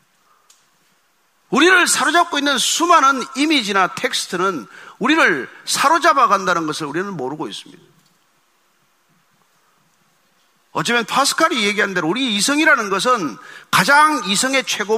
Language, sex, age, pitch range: Korean, male, 40-59, 195-280 Hz